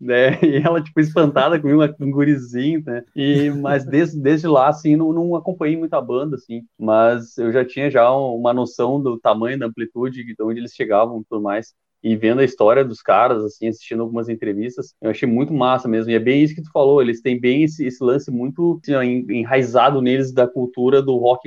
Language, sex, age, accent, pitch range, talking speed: Portuguese, male, 20-39, Brazilian, 120-145 Hz, 215 wpm